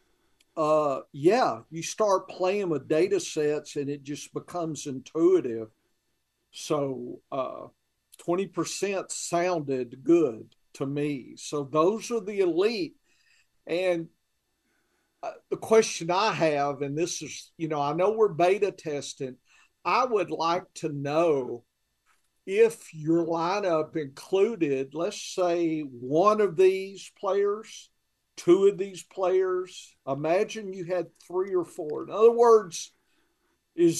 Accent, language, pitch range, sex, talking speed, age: American, English, 150-205 Hz, male, 125 wpm, 50-69